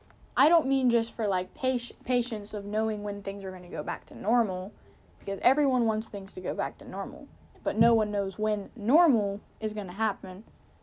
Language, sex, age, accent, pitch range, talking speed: English, female, 10-29, American, 205-250 Hz, 205 wpm